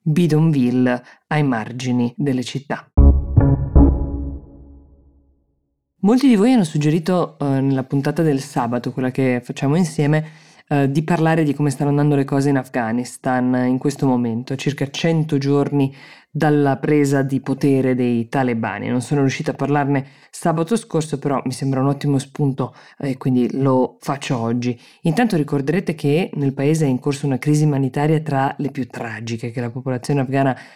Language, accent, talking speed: Italian, native, 155 wpm